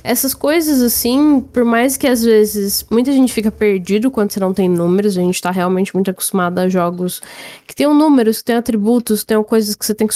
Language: Portuguese